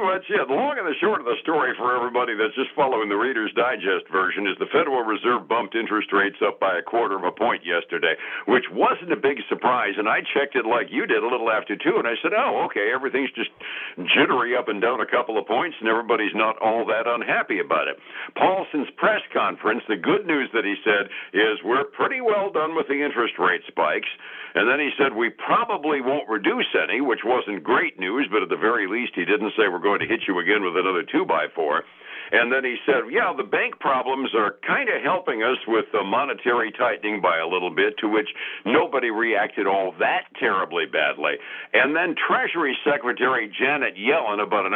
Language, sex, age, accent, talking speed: English, male, 60-79, American, 215 wpm